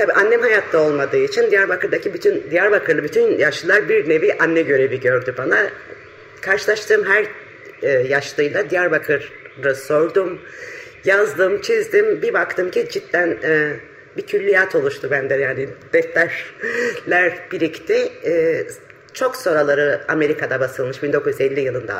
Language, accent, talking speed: Turkish, native, 115 wpm